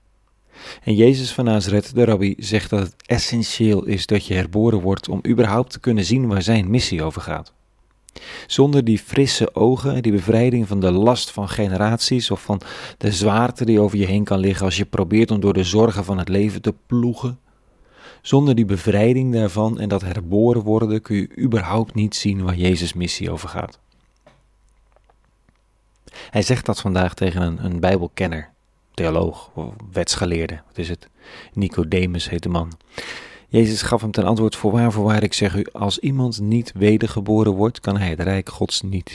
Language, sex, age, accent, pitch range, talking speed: Dutch, male, 40-59, Dutch, 95-115 Hz, 180 wpm